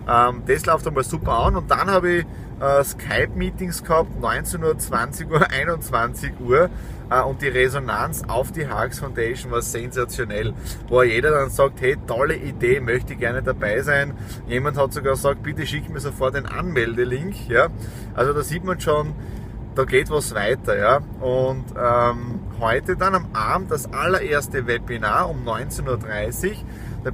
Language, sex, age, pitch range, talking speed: German, male, 30-49, 115-145 Hz, 160 wpm